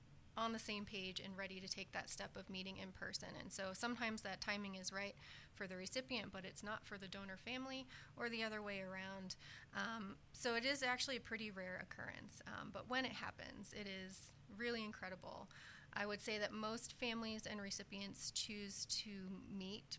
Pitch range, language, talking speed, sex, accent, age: 190-225 Hz, English, 195 wpm, female, American, 30-49